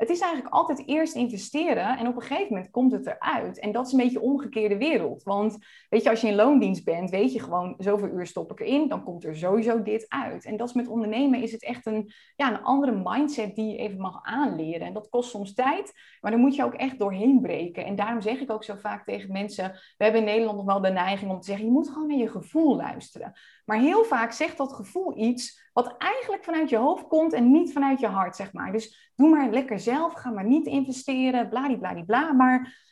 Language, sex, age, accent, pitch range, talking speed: English, female, 20-39, Dutch, 210-275 Hz, 240 wpm